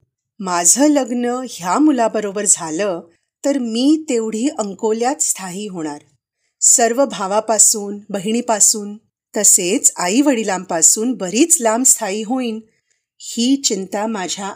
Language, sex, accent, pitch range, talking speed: Marathi, female, native, 170-240 Hz, 100 wpm